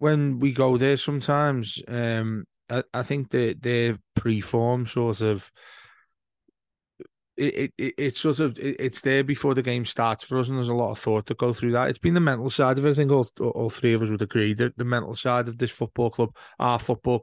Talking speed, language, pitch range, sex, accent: 225 wpm, English, 115-140 Hz, male, British